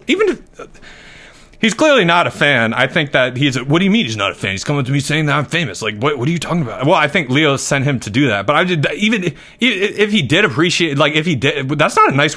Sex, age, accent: male, 30-49, American